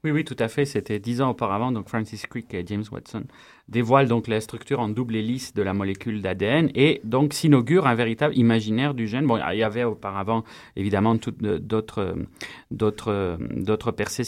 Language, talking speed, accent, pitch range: French, 190 wpm, French, 110-140 Hz